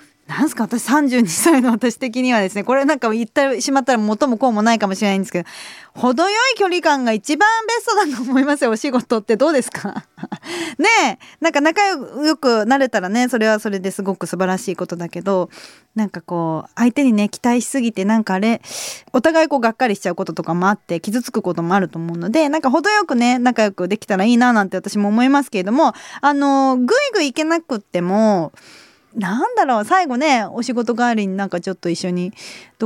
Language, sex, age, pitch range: Japanese, female, 20-39, 195-290 Hz